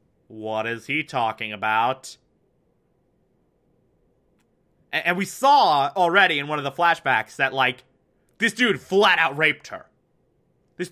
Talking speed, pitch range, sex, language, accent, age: 120 wpm, 140-215 Hz, male, English, American, 30-49